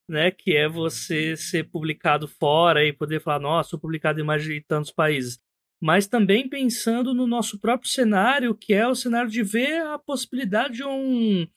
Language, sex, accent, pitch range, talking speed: Portuguese, male, Brazilian, 155-220 Hz, 180 wpm